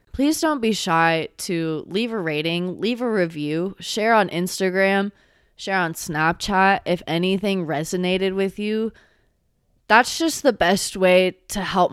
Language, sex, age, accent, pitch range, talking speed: English, female, 20-39, American, 165-220 Hz, 145 wpm